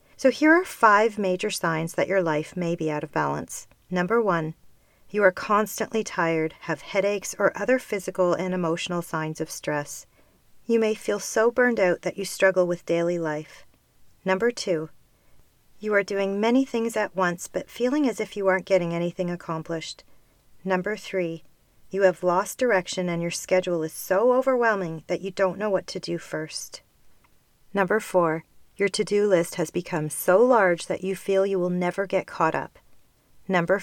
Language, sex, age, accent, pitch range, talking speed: English, female, 40-59, American, 165-210 Hz, 175 wpm